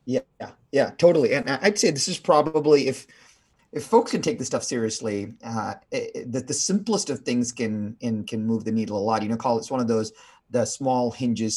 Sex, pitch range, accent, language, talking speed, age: male, 115-150 Hz, American, English, 215 wpm, 30-49